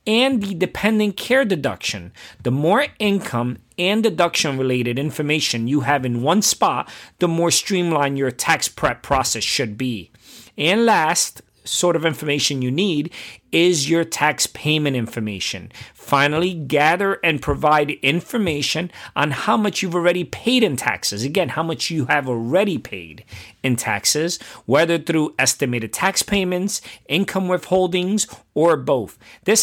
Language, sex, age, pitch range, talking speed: English, male, 40-59, 130-175 Hz, 140 wpm